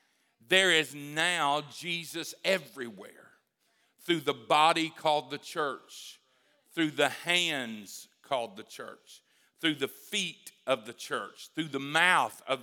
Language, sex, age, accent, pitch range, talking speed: English, male, 50-69, American, 155-205 Hz, 130 wpm